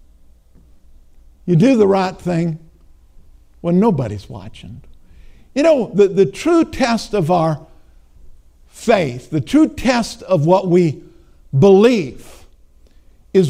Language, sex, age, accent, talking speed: English, male, 60-79, American, 110 wpm